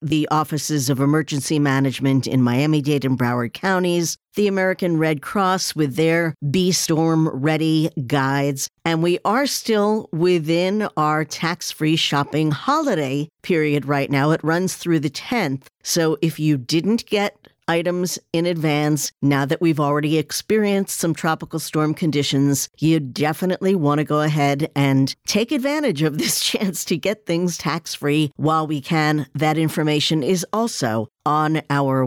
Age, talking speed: 50-69, 145 wpm